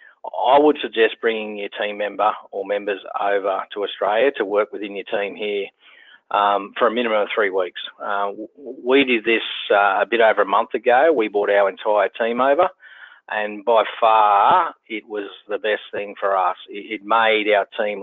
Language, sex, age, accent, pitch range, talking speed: English, male, 30-49, Australian, 100-145 Hz, 185 wpm